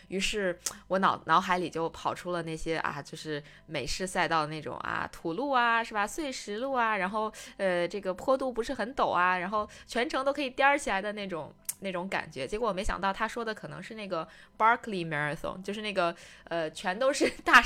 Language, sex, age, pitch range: Chinese, female, 20-39, 175-225 Hz